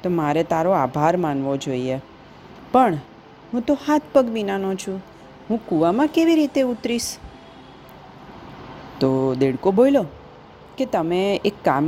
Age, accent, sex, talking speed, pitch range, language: 40-59, native, female, 75 wpm, 145-200 Hz, Gujarati